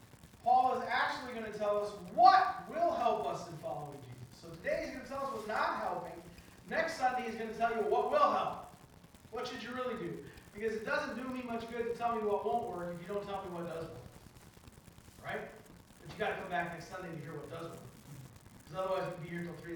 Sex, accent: male, American